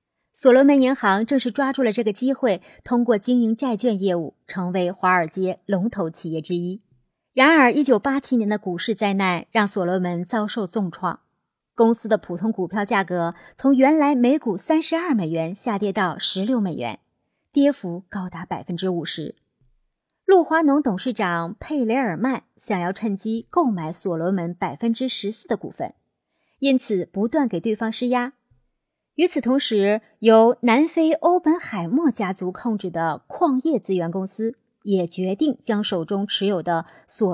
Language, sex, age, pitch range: Chinese, female, 30-49, 185-255 Hz